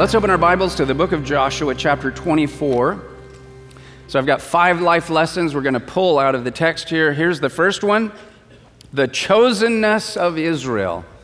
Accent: American